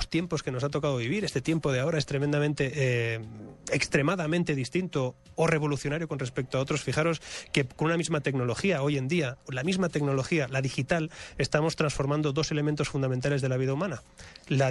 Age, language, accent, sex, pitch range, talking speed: 30-49, Spanish, Spanish, male, 135-165 Hz, 185 wpm